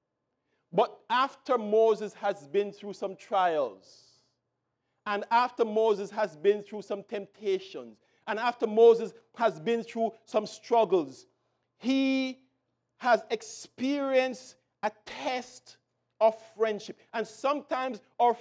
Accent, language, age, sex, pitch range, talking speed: Nigerian, English, 50-69, male, 210-250 Hz, 110 wpm